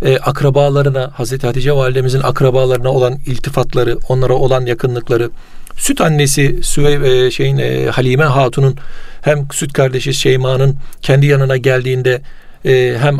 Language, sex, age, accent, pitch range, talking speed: Turkish, male, 40-59, native, 130-155 Hz, 125 wpm